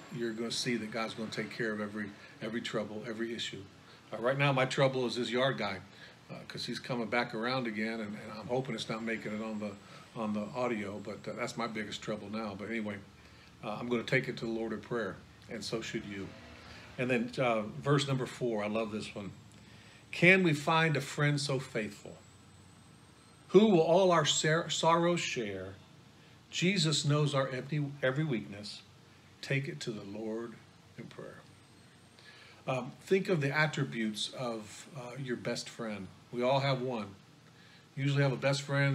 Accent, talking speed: American, 190 wpm